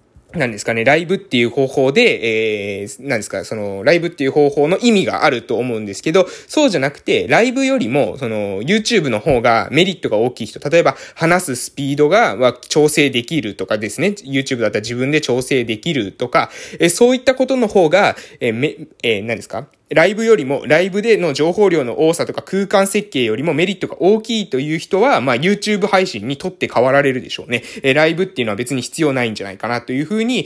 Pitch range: 120-205 Hz